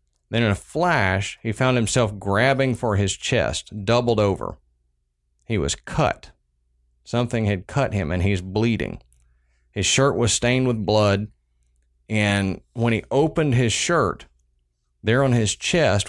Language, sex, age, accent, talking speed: English, male, 40-59, American, 145 wpm